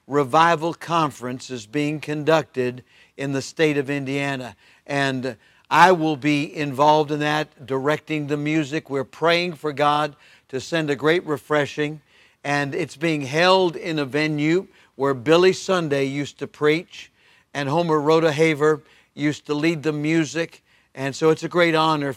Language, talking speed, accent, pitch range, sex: English, 150 wpm, American, 140-165 Hz, male